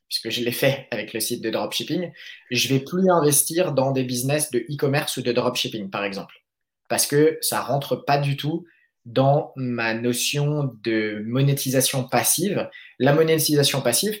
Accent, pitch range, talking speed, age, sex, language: French, 125-150 Hz, 165 wpm, 20-39, male, French